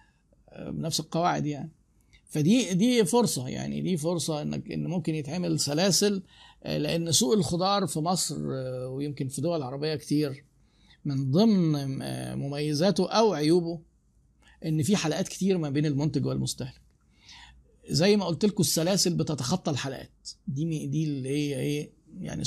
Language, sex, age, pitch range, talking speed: Arabic, male, 50-69, 140-180 Hz, 135 wpm